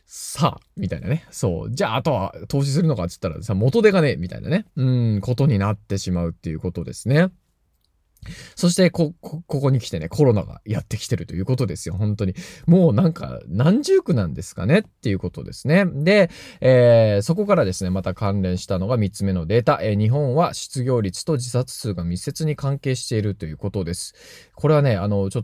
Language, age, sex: Japanese, 20-39, male